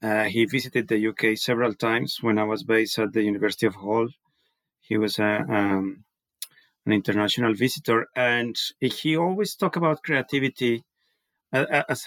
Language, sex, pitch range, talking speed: English, male, 115-140 Hz, 150 wpm